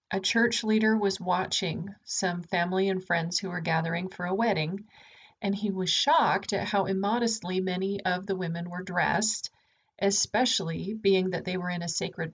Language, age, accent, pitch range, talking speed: English, 40-59, American, 180-220 Hz, 175 wpm